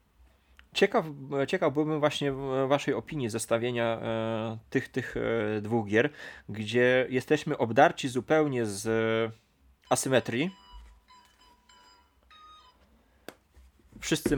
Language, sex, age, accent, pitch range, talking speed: Polish, male, 20-39, native, 105-140 Hz, 75 wpm